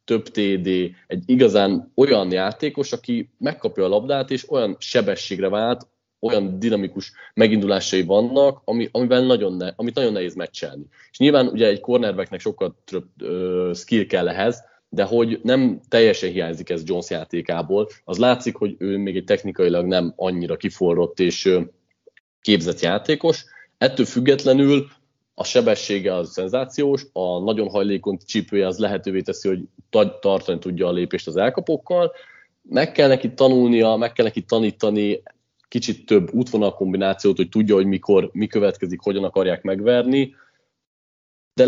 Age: 30-49